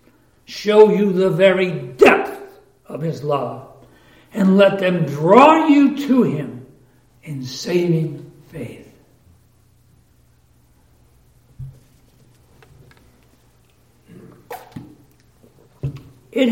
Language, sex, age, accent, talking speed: English, male, 60-79, American, 70 wpm